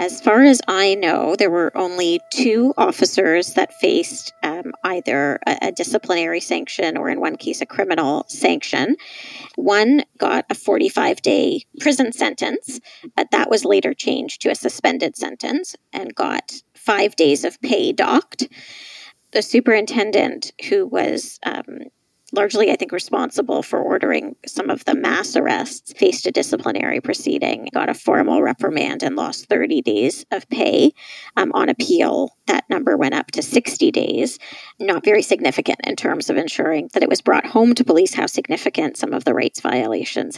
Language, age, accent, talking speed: English, 30-49, American, 160 wpm